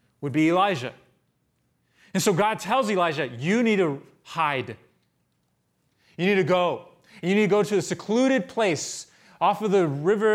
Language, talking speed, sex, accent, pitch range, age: English, 160 wpm, male, American, 140-200 Hz, 30-49